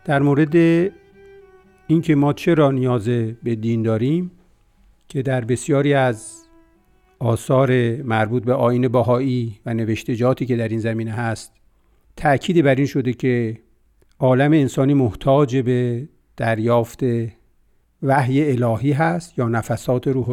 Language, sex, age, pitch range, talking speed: Persian, male, 50-69, 120-150 Hz, 125 wpm